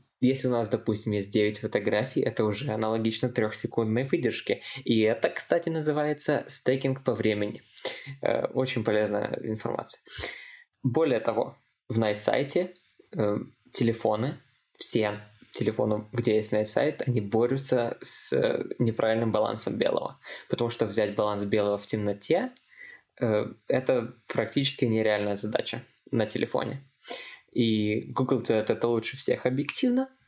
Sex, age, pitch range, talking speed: male, 20-39, 110-130 Hz, 115 wpm